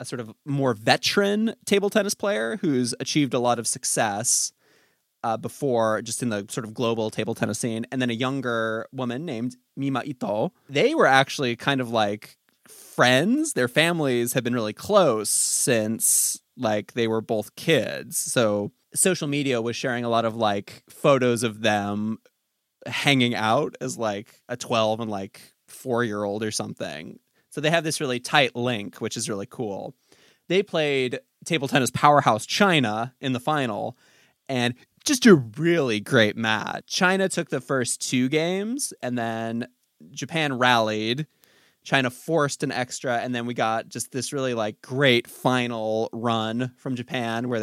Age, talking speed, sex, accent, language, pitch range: 20-39, 165 wpm, male, American, English, 115-145 Hz